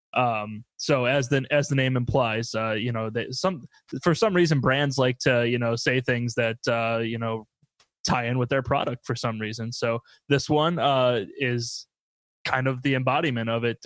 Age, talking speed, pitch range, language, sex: 20-39, 200 wpm, 120-145 Hz, English, male